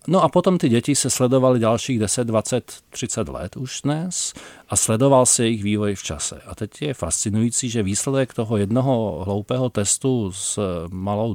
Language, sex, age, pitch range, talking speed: Czech, male, 40-59, 95-120 Hz, 175 wpm